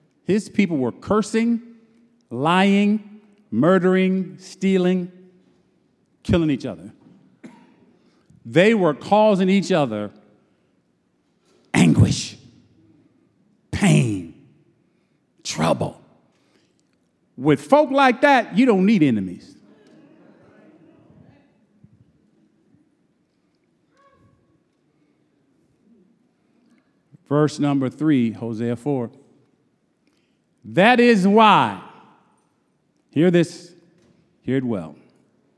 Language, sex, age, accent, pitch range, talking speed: English, male, 50-69, American, 175-235 Hz, 65 wpm